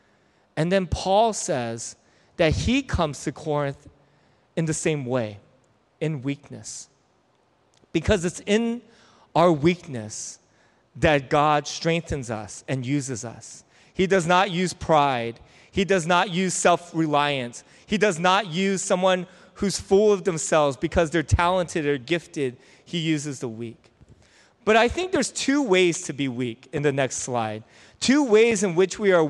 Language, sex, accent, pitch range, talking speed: English, male, American, 145-190 Hz, 150 wpm